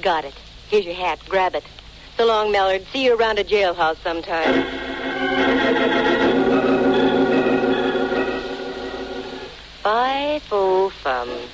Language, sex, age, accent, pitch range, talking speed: English, female, 60-79, American, 145-225 Hz, 90 wpm